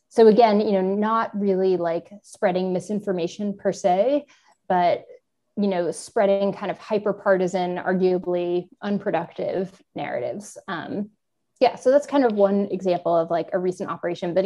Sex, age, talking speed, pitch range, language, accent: female, 20-39, 145 wpm, 180-210 Hz, English, American